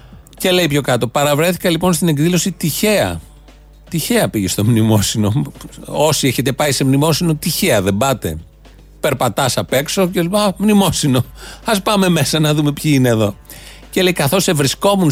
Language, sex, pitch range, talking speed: Greek, male, 130-175 Hz, 155 wpm